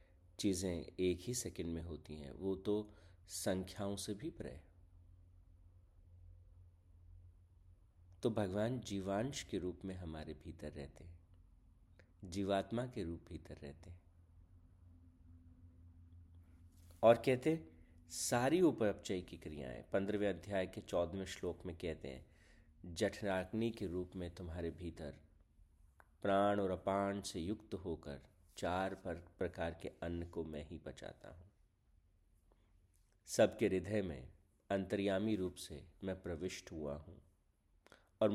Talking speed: 115 wpm